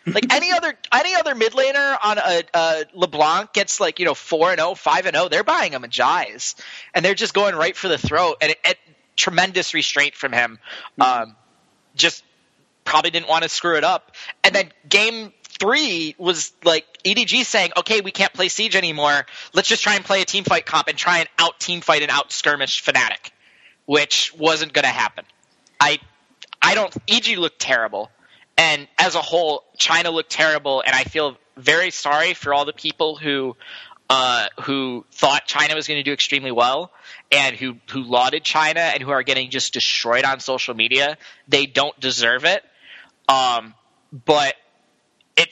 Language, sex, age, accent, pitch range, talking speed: English, male, 20-39, American, 135-175 Hz, 185 wpm